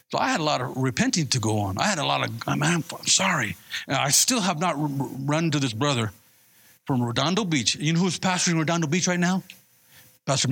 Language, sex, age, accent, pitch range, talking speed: English, male, 50-69, American, 135-190 Hz, 210 wpm